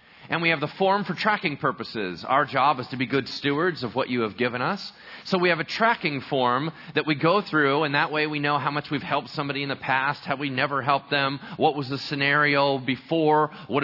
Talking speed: 240 wpm